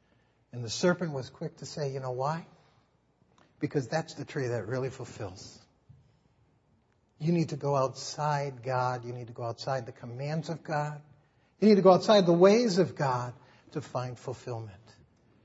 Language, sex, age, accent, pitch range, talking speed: English, male, 60-79, American, 130-195 Hz, 170 wpm